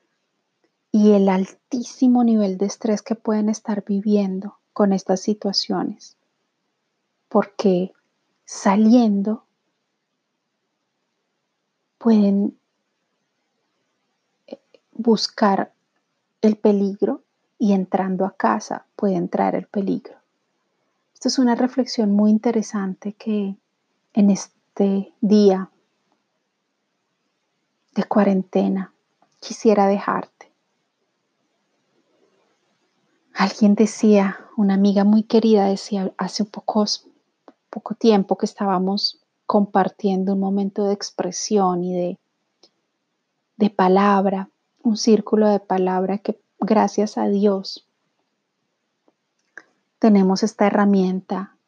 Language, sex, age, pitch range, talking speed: Spanish, female, 30-49, 195-215 Hz, 85 wpm